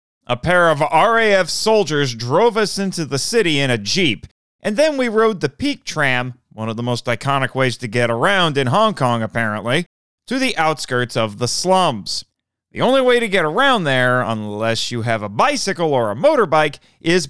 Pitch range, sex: 120-185 Hz, male